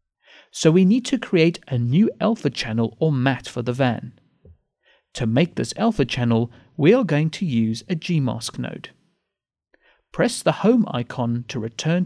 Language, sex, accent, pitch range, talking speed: English, male, British, 120-180 Hz, 165 wpm